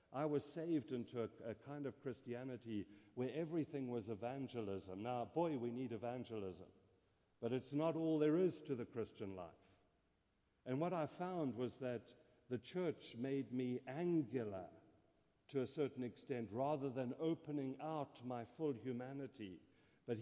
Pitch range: 120-150 Hz